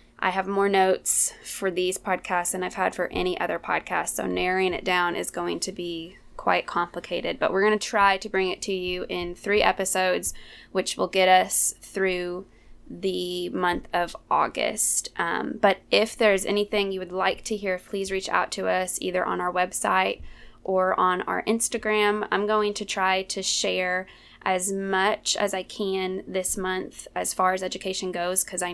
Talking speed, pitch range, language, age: 185 wpm, 180-205 Hz, English, 20-39